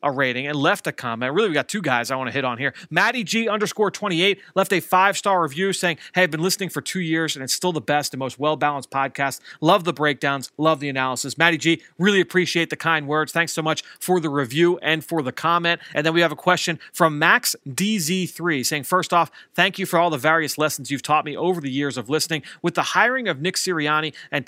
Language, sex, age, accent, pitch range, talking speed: English, male, 30-49, American, 145-180 Hz, 245 wpm